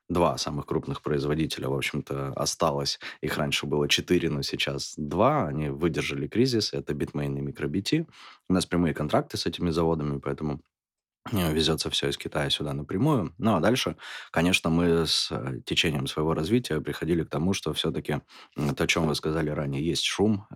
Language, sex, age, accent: Russian, male, 20-39, native